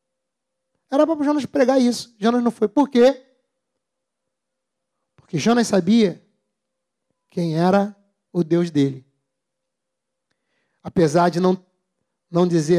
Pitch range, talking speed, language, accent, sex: 190-260 Hz, 110 wpm, Portuguese, Brazilian, male